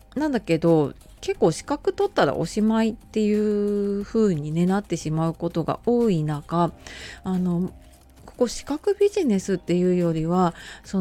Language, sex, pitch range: Japanese, female, 165-220 Hz